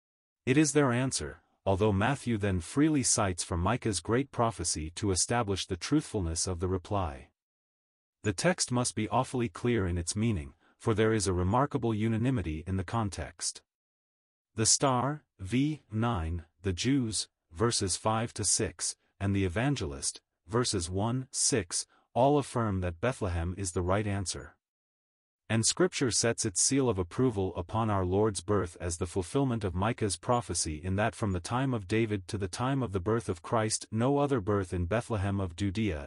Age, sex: 40-59, male